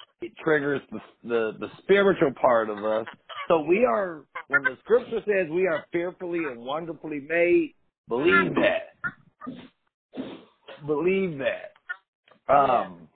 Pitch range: 135-180 Hz